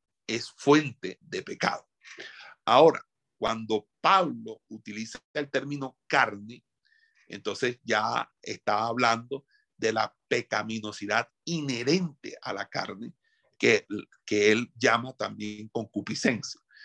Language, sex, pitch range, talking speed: Spanish, male, 110-145 Hz, 100 wpm